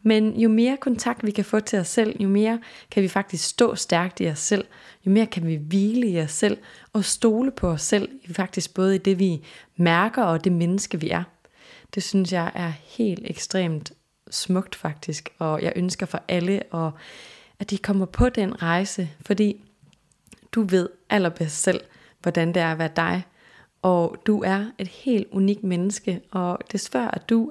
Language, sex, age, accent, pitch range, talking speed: Danish, female, 20-39, native, 170-210 Hz, 185 wpm